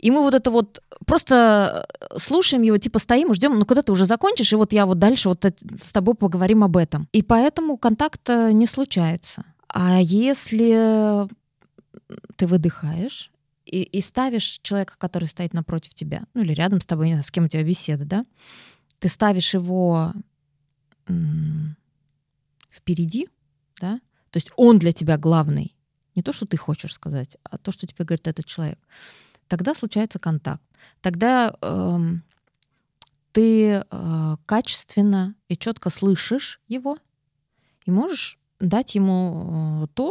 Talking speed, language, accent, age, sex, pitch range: 150 wpm, Russian, native, 20-39, female, 165-220 Hz